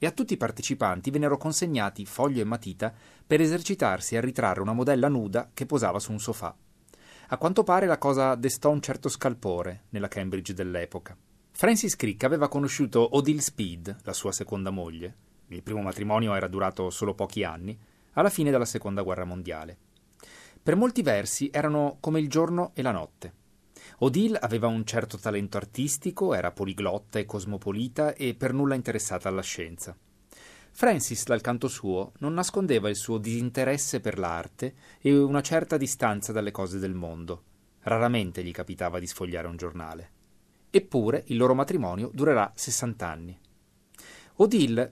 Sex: male